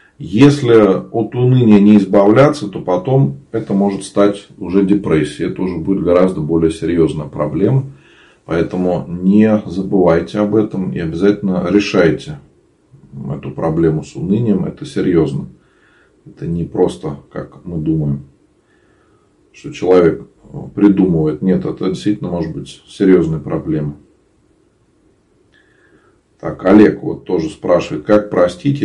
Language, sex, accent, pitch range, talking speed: Russian, male, native, 90-125 Hz, 115 wpm